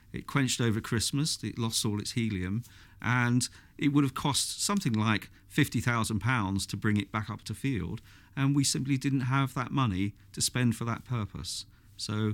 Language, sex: English, male